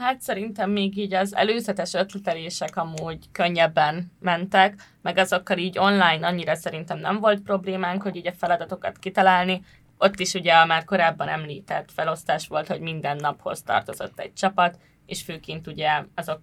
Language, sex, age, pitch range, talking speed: Hungarian, female, 20-39, 175-195 Hz, 155 wpm